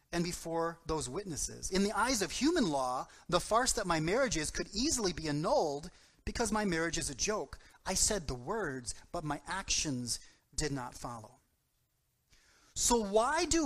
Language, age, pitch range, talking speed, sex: English, 30-49, 160-225 Hz, 170 wpm, male